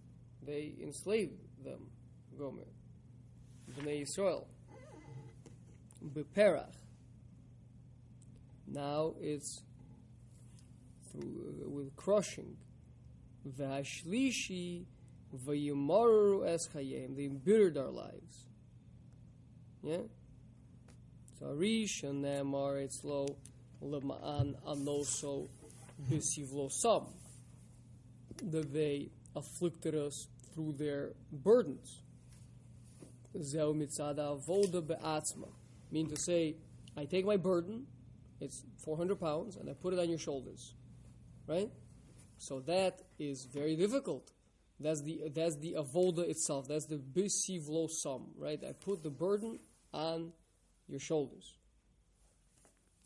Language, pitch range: English, 130-170 Hz